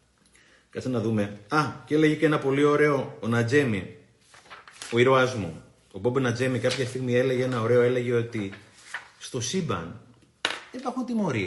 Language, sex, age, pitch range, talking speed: Greek, male, 30-49, 105-150 Hz, 155 wpm